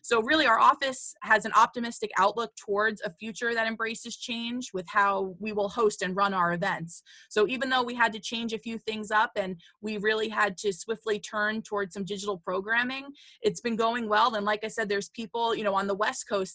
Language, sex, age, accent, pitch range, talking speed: English, female, 20-39, American, 190-220 Hz, 220 wpm